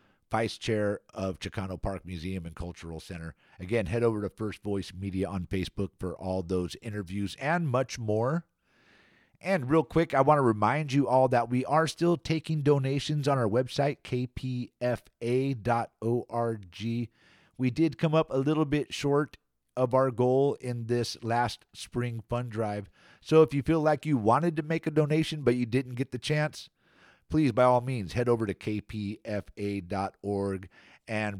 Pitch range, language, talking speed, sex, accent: 100-130 Hz, English, 165 wpm, male, American